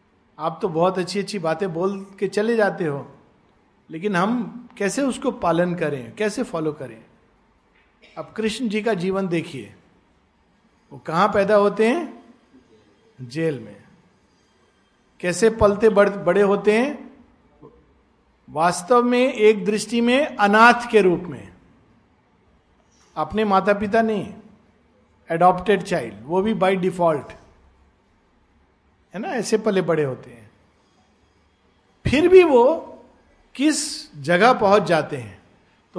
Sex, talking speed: male, 120 wpm